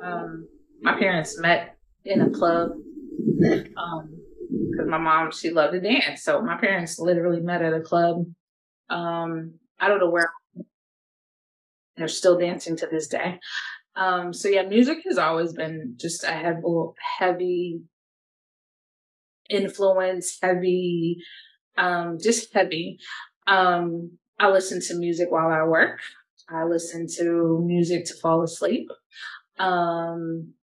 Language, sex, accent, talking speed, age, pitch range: English, female, American, 130 wpm, 20-39, 165-195 Hz